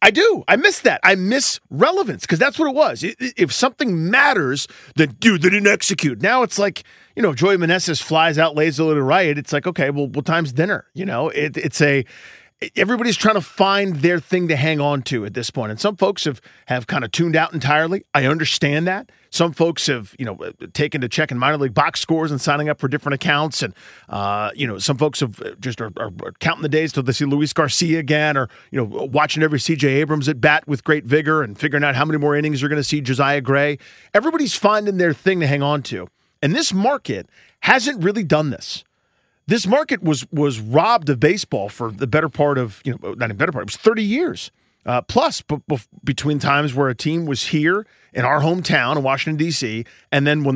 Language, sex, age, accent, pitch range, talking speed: English, male, 40-59, American, 140-180 Hz, 230 wpm